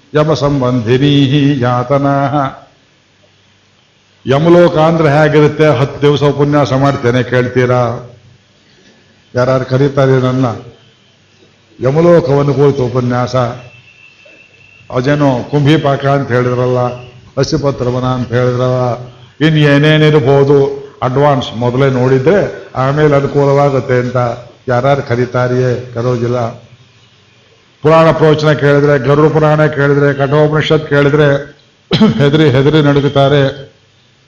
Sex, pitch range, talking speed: male, 125-145 Hz, 80 wpm